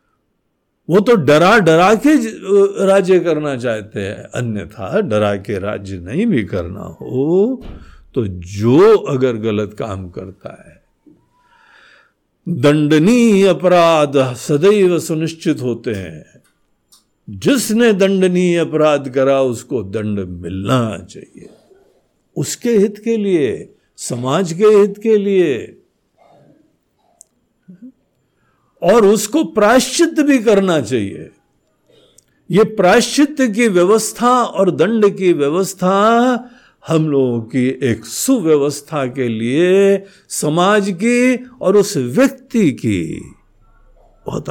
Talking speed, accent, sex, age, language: 100 wpm, native, male, 60-79, Hindi